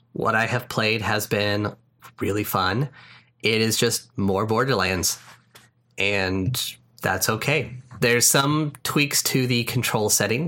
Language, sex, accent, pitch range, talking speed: English, male, American, 100-125 Hz, 130 wpm